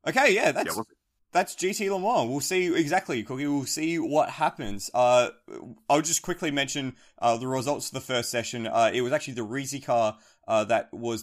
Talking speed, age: 200 wpm, 20-39